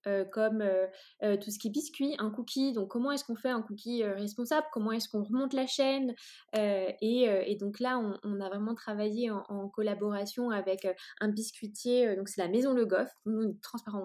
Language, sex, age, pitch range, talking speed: French, female, 20-39, 200-245 Hz, 230 wpm